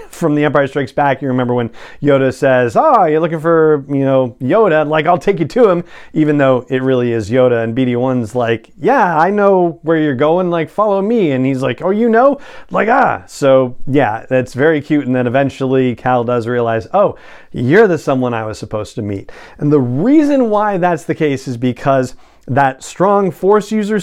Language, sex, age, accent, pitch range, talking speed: English, male, 40-59, American, 130-170 Hz, 205 wpm